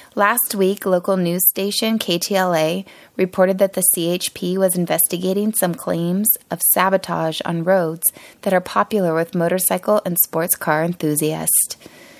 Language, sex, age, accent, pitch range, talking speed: English, female, 20-39, American, 170-205 Hz, 135 wpm